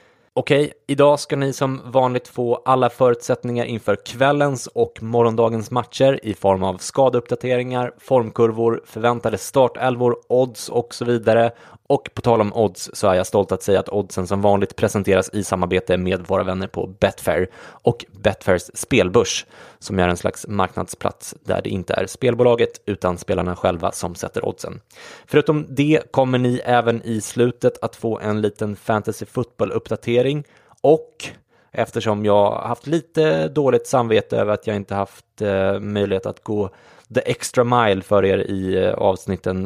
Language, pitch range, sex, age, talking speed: English, 95-125 Hz, male, 20-39, 155 wpm